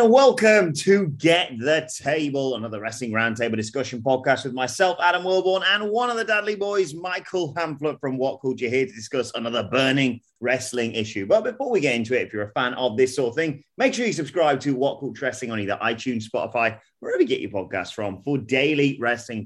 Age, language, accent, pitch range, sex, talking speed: 30-49, English, British, 110-150 Hz, male, 215 wpm